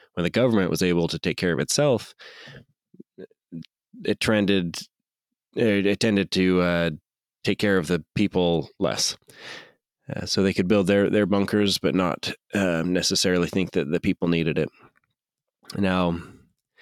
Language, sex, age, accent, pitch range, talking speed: English, male, 30-49, American, 85-100 Hz, 145 wpm